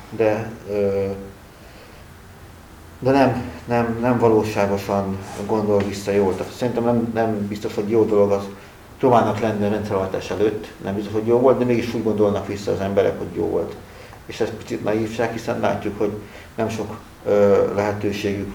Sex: male